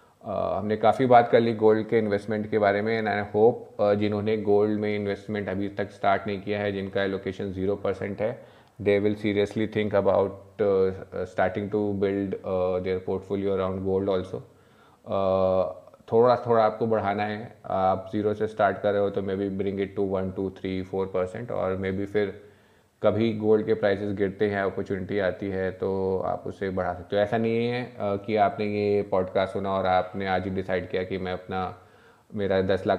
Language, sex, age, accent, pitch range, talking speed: Hindi, male, 20-39, native, 95-105 Hz, 190 wpm